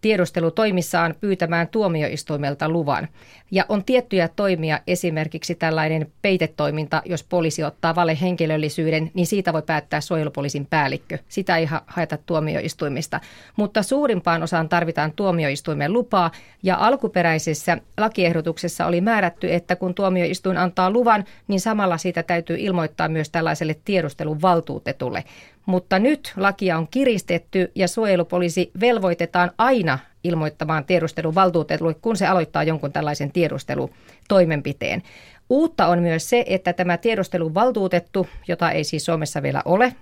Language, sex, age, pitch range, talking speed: Finnish, female, 40-59, 160-190 Hz, 125 wpm